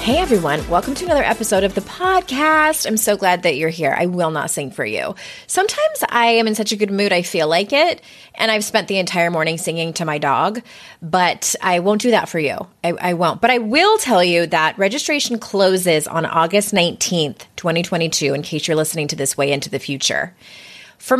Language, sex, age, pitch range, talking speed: English, female, 20-39, 165-245 Hz, 215 wpm